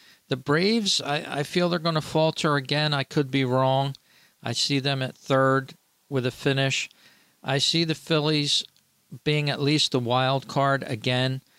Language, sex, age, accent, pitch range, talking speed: English, male, 50-69, American, 120-150 Hz, 170 wpm